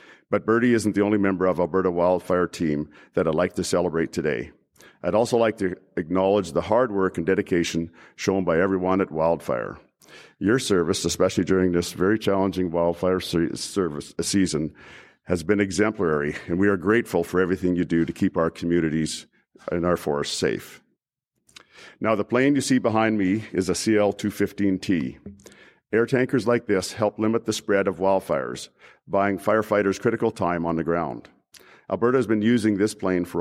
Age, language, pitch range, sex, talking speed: 50-69, English, 90-110 Hz, male, 170 wpm